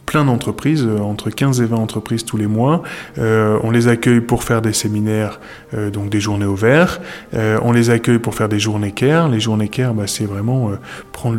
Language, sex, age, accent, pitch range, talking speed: French, male, 20-39, French, 105-120 Hz, 210 wpm